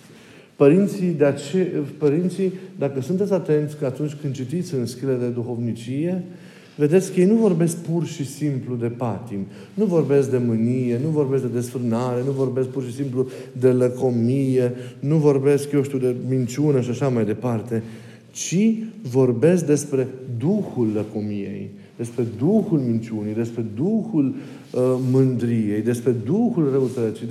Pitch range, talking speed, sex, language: 125-160 Hz, 140 wpm, male, Romanian